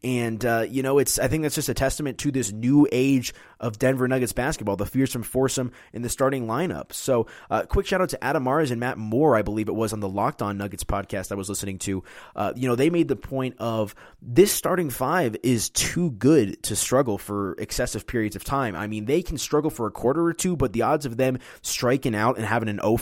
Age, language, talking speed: 20-39, English, 240 wpm